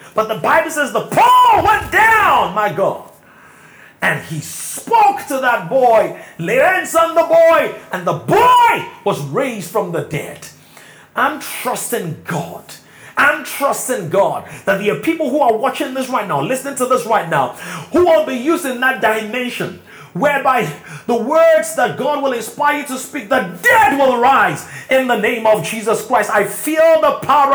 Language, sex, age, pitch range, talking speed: English, male, 30-49, 225-305 Hz, 170 wpm